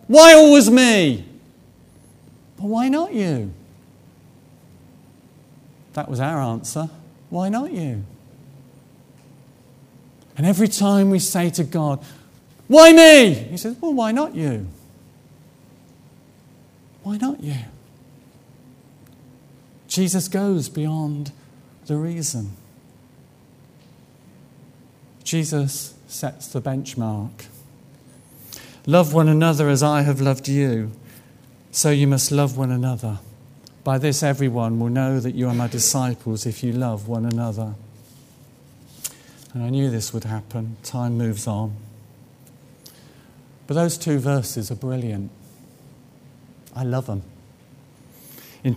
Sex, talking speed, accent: male, 110 wpm, British